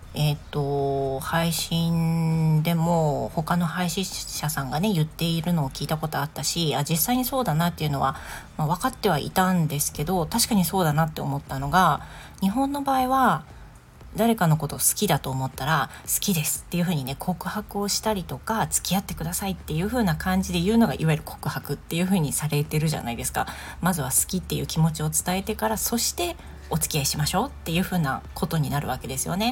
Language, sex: Japanese, female